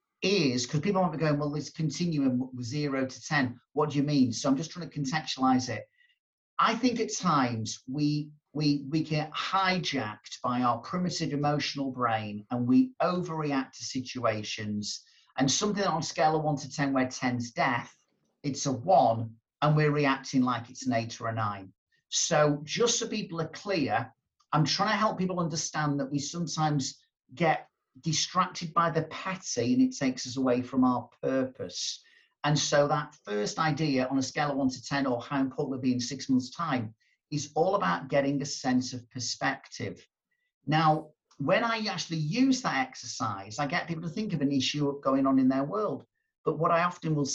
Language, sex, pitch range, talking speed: English, male, 130-160 Hz, 190 wpm